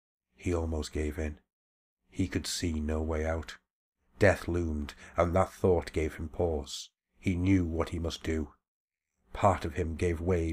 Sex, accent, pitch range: male, British, 85-100 Hz